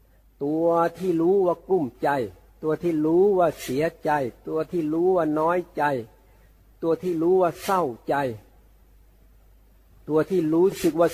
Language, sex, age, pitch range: Thai, male, 60-79, 115-160 Hz